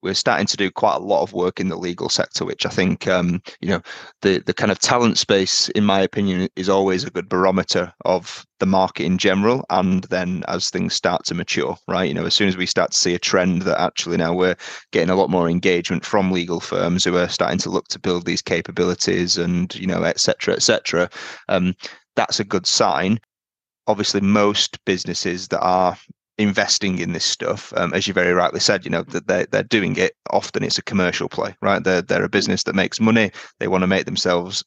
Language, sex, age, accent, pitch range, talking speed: English, male, 30-49, British, 90-100 Hz, 225 wpm